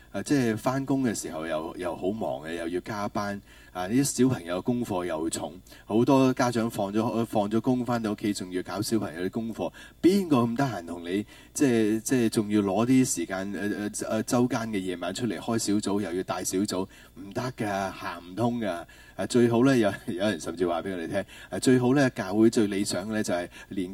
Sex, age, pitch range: male, 30-49, 95-120 Hz